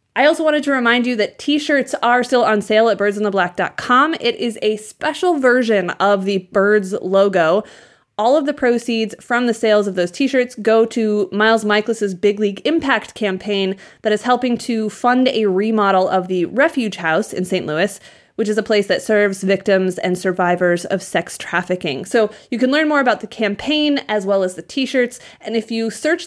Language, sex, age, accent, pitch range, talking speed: English, female, 20-39, American, 195-250 Hz, 190 wpm